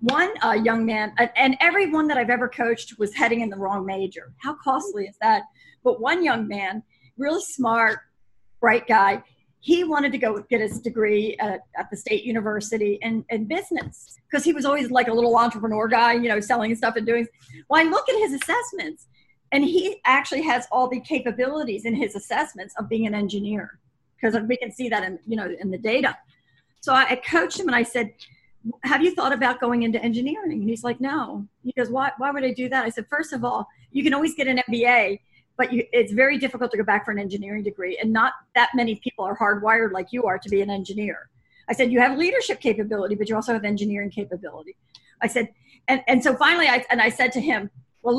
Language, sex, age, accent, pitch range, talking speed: English, female, 40-59, American, 210-265 Hz, 220 wpm